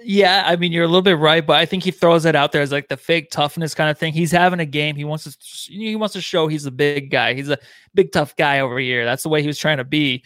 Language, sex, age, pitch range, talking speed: English, male, 20-39, 140-165 Hz, 320 wpm